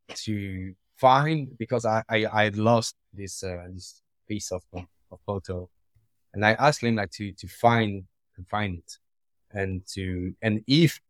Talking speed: 155 wpm